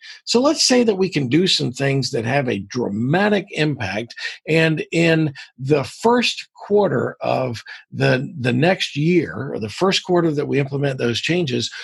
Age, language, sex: 50-69, English, male